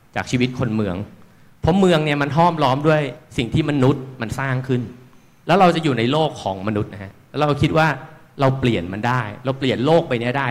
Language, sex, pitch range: Thai, male, 115-155 Hz